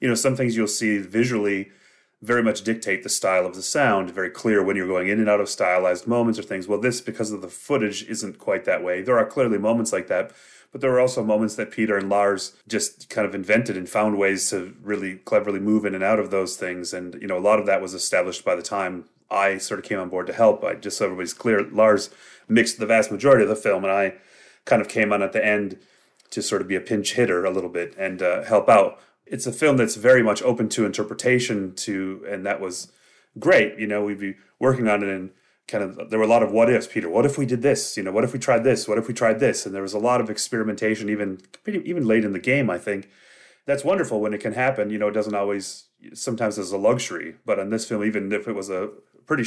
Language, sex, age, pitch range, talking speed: English, male, 30-49, 100-115 Hz, 260 wpm